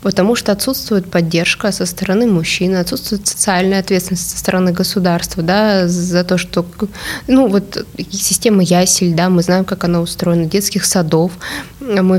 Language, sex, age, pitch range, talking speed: Russian, female, 20-39, 180-210 Hz, 150 wpm